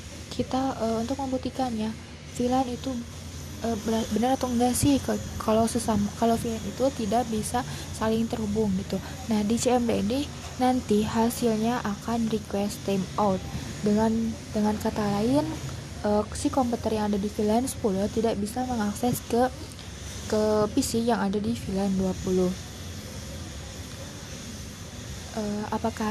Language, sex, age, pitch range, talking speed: Indonesian, female, 20-39, 205-235 Hz, 125 wpm